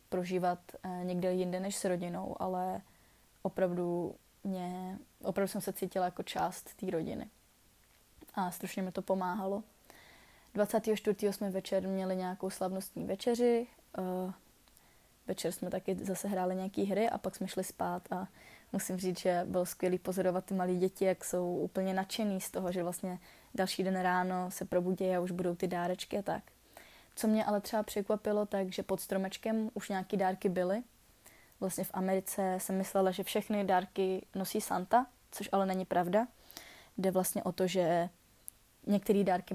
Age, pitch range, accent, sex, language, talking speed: 20-39, 185-205 Hz, native, female, Czech, 160 wpm